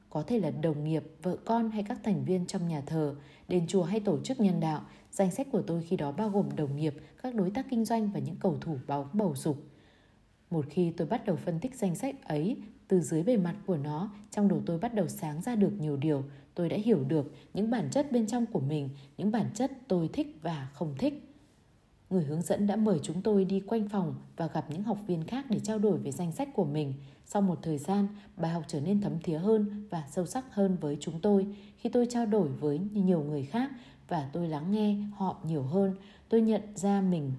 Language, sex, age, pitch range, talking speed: Vietnamese, female, 20-39, 155-210 Hz, 240 wpm